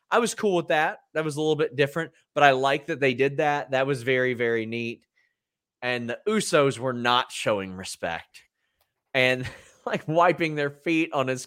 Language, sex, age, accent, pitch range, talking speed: English, male, 30-49, American, 120-170 Hz, 195 wpm